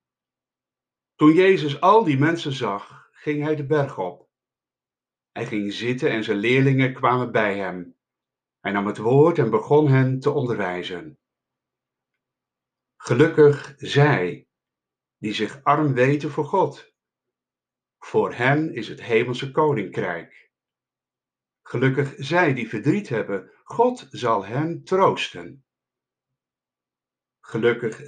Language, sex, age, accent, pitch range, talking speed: Dutch, male, 60-79, Dutch, 110-145 Hz, 115 wpm